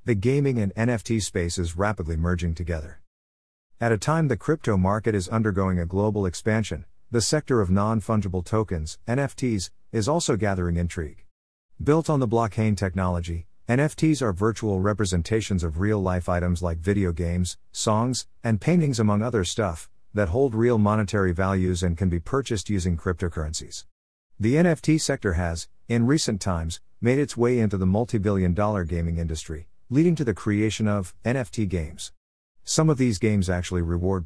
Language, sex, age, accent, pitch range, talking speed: English, male, 50-69, American, 90-115 Hz, 160 wpm